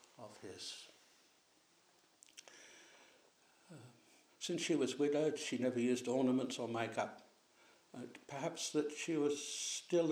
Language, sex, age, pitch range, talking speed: English, male, 60-79, 120-145 Hz, 105 wpm